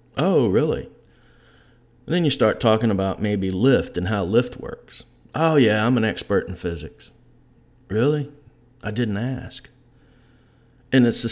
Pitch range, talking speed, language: 100-125 Hz, 150 wpm, English